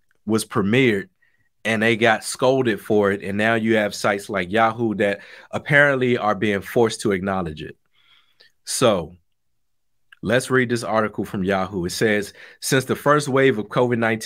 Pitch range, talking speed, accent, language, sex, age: 100-125 Hz, 160 wpm, American, English, male, 30-49